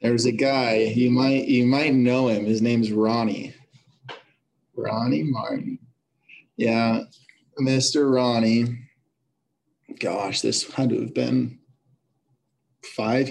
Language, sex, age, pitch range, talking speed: English, male, 20-39, 110-130 Hz, 115 wpm